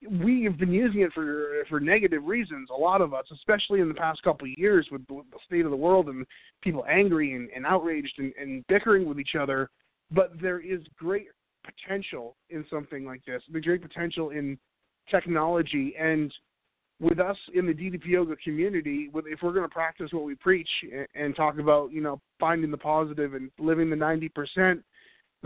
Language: English